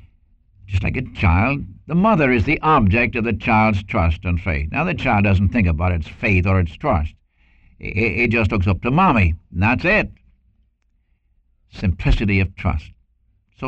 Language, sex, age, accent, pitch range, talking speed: English, male, 60-79, American, 90-130 Hz, 170 wpm